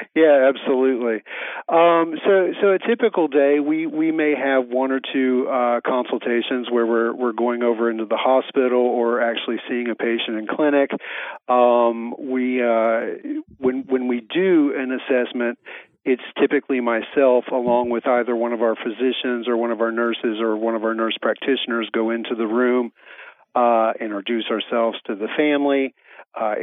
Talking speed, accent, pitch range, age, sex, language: 165 wpm, American, 115-130 Hz, 40-59, male, English